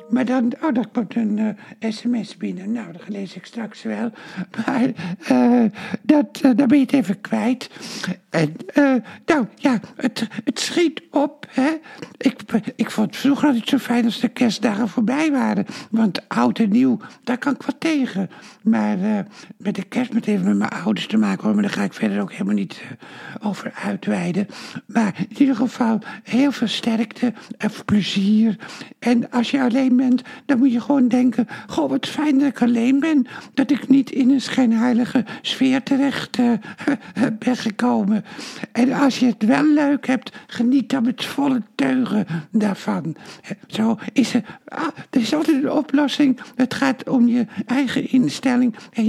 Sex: male